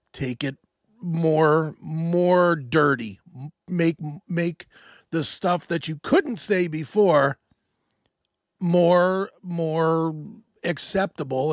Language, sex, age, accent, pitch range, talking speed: English, male, 40-59, American, 145-195 Hz, 90 wpm